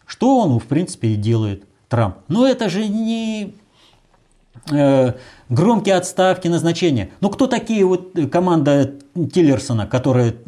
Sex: male